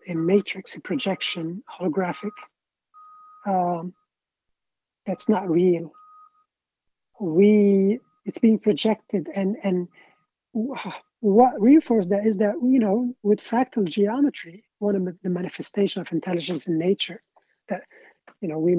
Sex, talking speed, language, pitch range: male, 120 wpm, English, 180-230 Hz